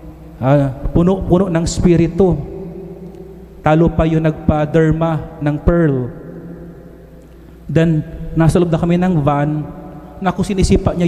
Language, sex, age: English, male, 30-49